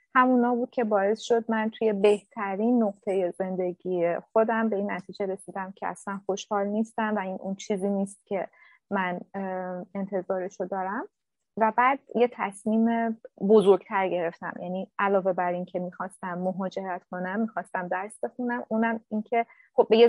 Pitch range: 195-240 Hz